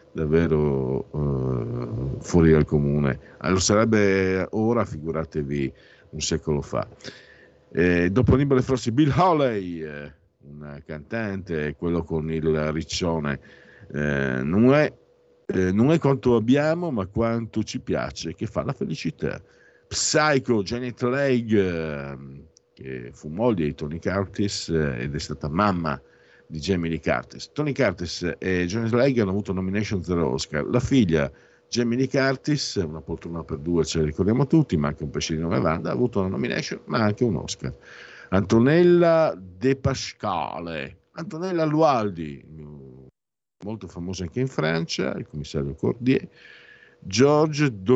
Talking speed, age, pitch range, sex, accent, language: 135 wpm, 50-69, 75-120 Hz, male, native, Italian